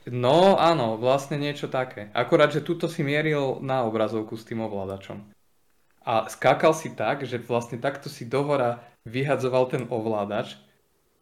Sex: male